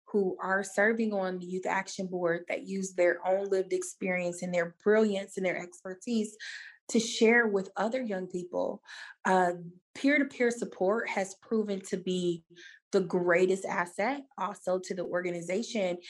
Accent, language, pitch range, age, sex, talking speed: American, English, 180-215 Hz, 20-39, female, 150 wpm